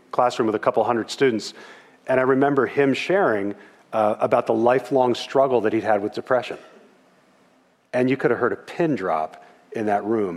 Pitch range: 115-150 Hz